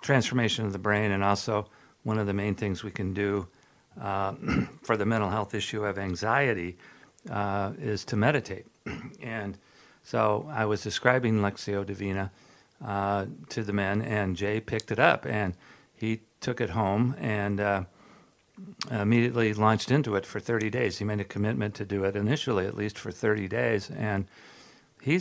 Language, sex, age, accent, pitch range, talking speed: English, male, 50-69, American, 100-120 Hz, 170 wpm